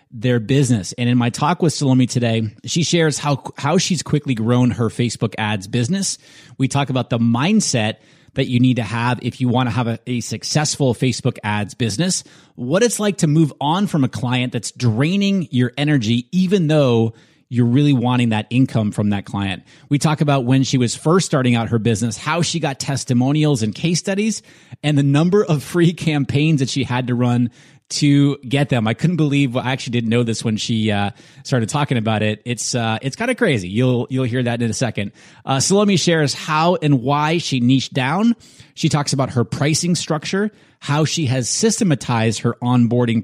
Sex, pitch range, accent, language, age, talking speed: male, 120-150 Hz, American, English, 30-49, 205 wpm